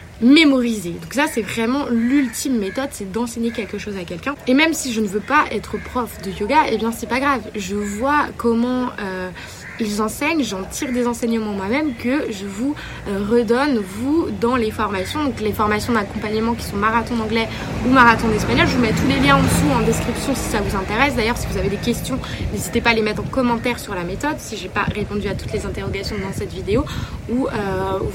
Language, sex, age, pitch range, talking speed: French, female, 20-39, 205-255 Hz, 215 wpm